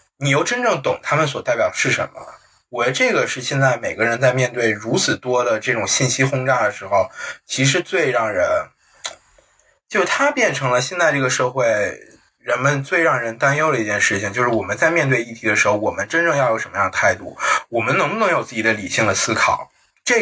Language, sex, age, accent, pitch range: Chinese, male, 20-39, native, 120-150 Hz